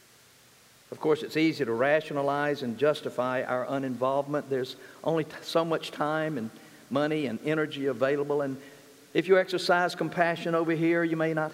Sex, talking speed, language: male, 155 wpm, English